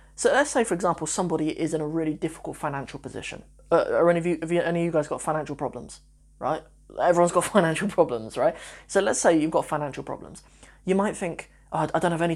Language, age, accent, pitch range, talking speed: English, 20-39, British, 150-185 Hz, 235 wpm